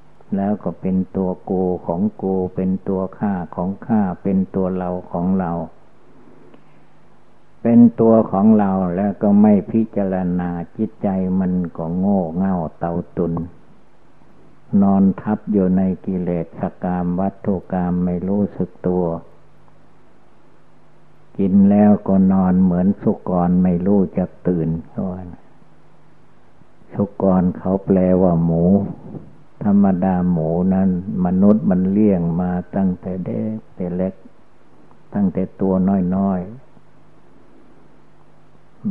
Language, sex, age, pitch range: Thai, male, 60-79, 90-100 Hz